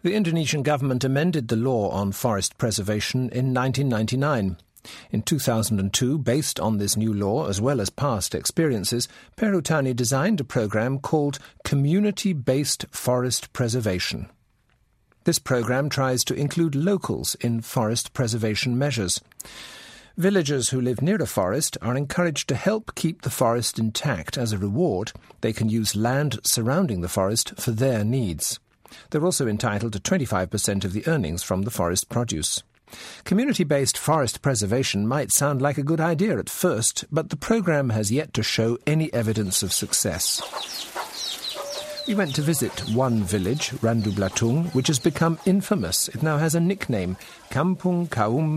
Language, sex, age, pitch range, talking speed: English, male, 50-69, 110-155 Hz, 150 wpm